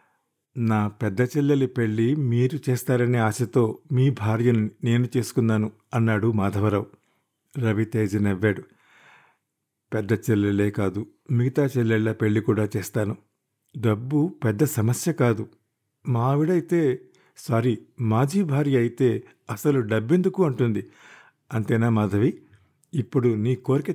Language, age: Telugu, 50-69